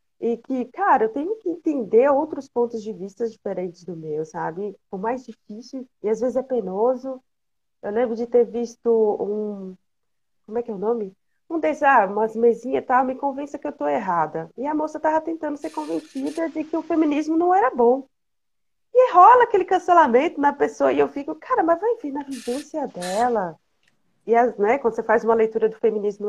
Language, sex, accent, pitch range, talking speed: Portuguese, female, Brazilian, 195-260 Hz, 200 wpm